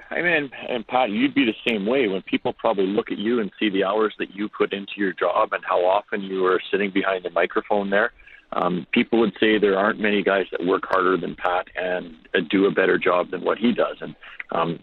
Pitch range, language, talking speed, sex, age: 90-110 Hz, English, 245 wpm, male, 40-59